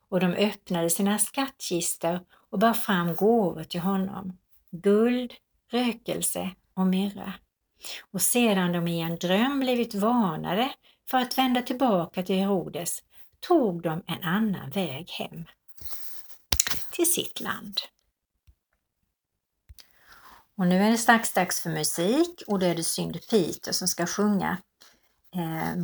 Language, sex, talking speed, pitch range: Swedish, female, 130 wpm, 185-235 Hz